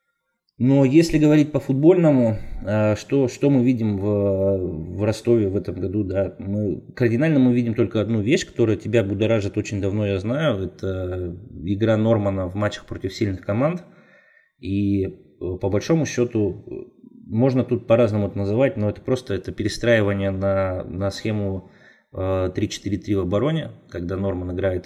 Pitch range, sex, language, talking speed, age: 100-125 Hz, male, Russian, 145 wpm, 20-39